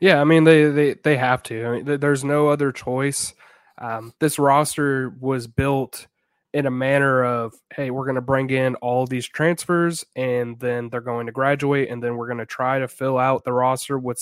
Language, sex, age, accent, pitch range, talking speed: English, male, 20-39, American, 120-145 Hz, 205 wpm